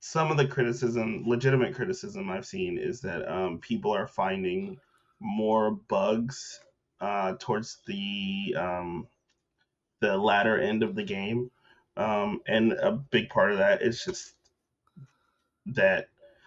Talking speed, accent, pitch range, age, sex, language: 130 wpm, American, 110-185 Hz, 20-39, male, English